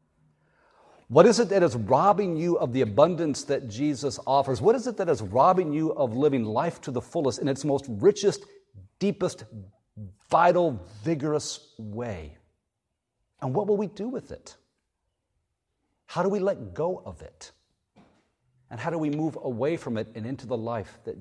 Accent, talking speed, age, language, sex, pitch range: American, 175 wpm, 50-69, English, male, 110-170 Hz